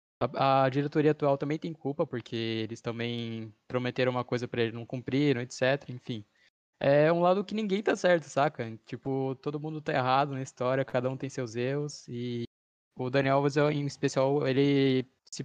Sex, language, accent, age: male, Portuguese, Brazilian, 10-29